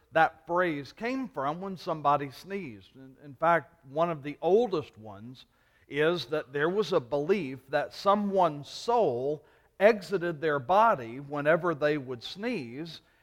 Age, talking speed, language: 50-69, 135 wpm, English